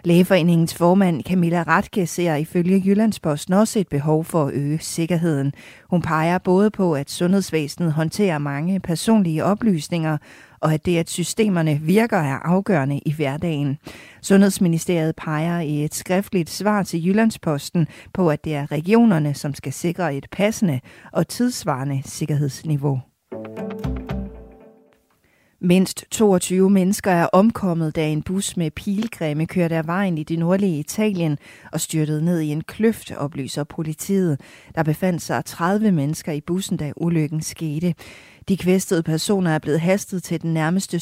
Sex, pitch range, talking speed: female, 150-185 Hz, 145 wpm